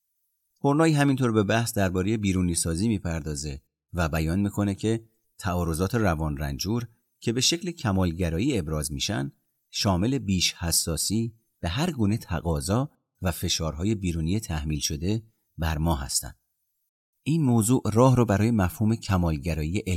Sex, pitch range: male, 80-110 Hz